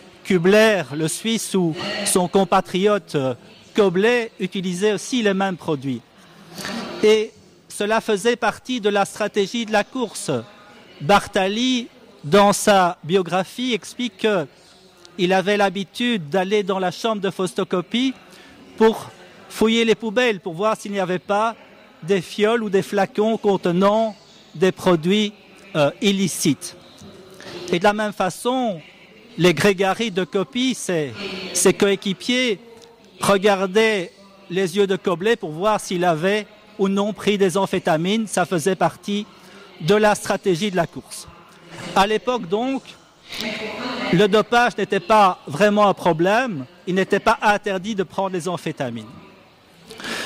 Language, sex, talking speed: Italian, male, 130 wpm